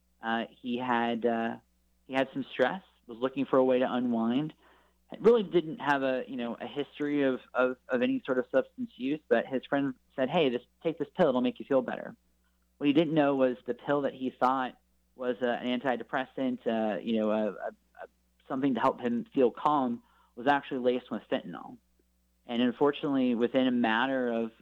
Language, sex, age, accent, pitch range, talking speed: English, male, 30-49, American, 110-135 Hz, 200 wpm